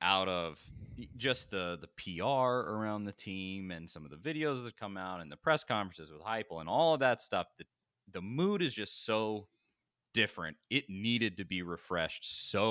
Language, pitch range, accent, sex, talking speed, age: English, 85-140 Hz, American, male, 195 wpm, 30-49